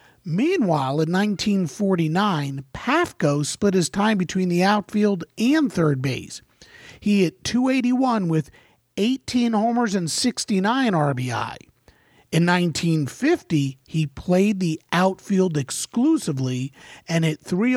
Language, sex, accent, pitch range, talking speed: English, male, American, 155-215 Hz, 120 wpm